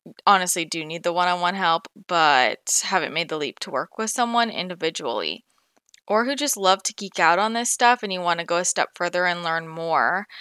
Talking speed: 215 wpm